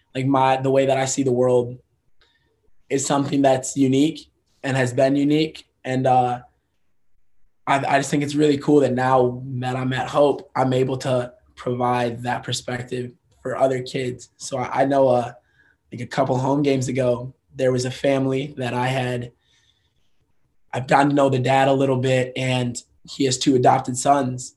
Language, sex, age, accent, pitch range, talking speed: English, male, 20-39, American, 125-135 Hz, 185 wpm